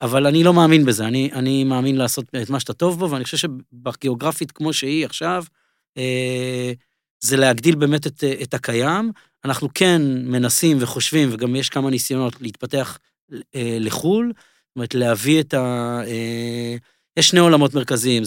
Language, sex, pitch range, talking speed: Hebrew, male, 120-150 Hz, 150 wpm